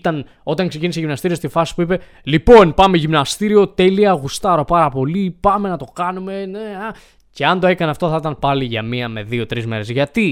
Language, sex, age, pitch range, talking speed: Greek, male, 20-39, 130-170 Hz, 200 wpm